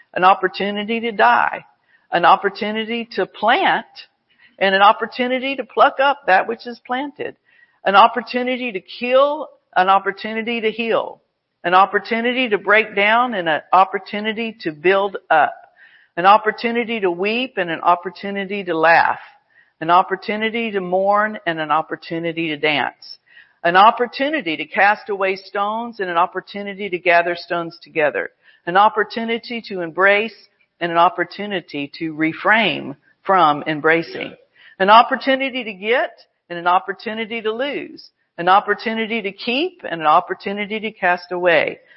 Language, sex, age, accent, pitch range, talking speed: English, female, 50-69, American, 180-235 Hz, 140 wpm